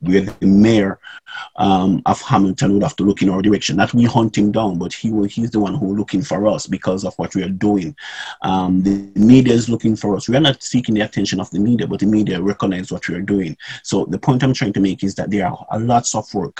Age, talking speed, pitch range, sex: 30-49, 270 wpm, 100-130 Hz, male